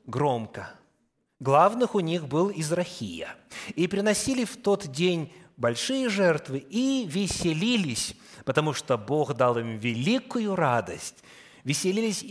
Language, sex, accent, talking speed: Russian, male, native, 110 wpm